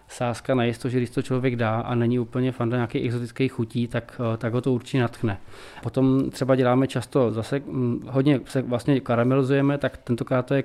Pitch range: 120-135 Hz